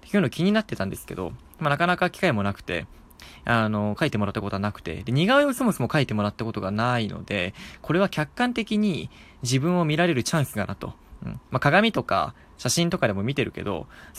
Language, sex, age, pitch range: Japanese, male, 20-39, 105-155 Hz